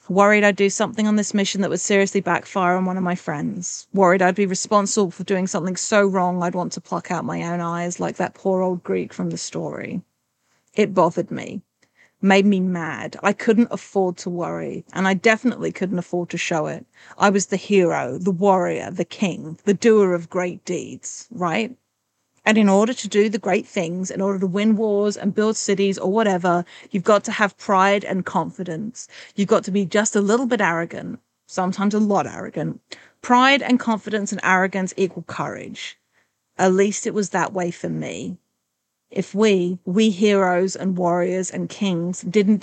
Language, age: English, 30-49